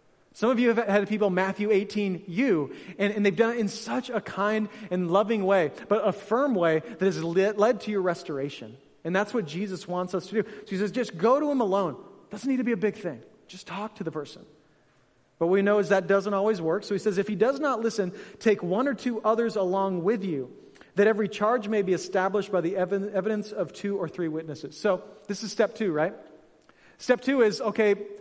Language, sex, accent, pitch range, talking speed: English, male, American, 175-210 Hz, 230 wpm